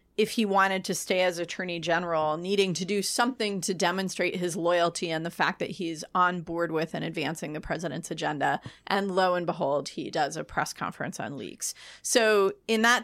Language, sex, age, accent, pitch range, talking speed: English, female, 30-49, American, 175-220 Hz, 200 wpm